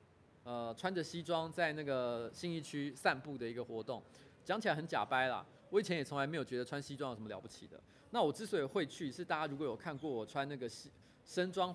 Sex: male